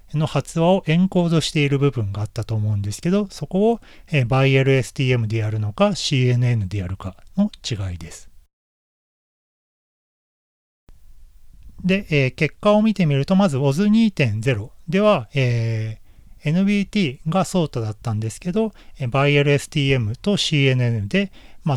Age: 40-59